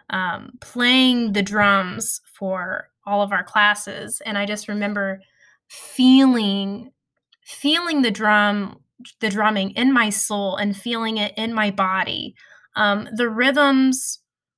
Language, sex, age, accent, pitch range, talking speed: English, female, 10-29, American, 205-240 Hz, 130 wpm